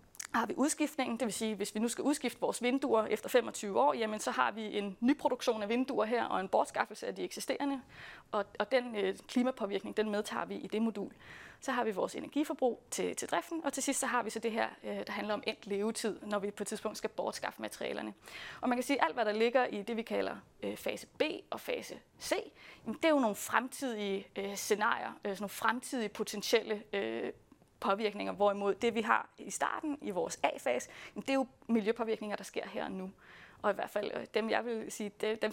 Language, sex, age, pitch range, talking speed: Danish, female, 20-39, 210-260 Hz, 225 wpm